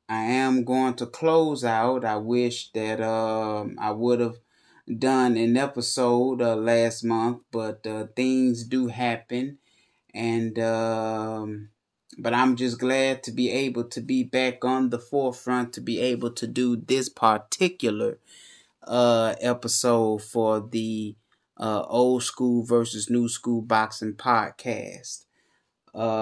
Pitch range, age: 110-130 Hz, 20-39